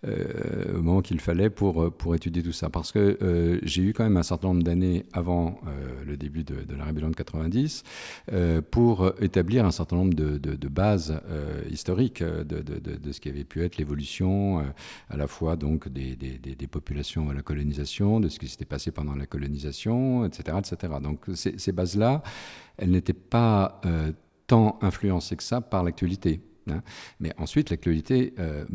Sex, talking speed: male, 195 wpm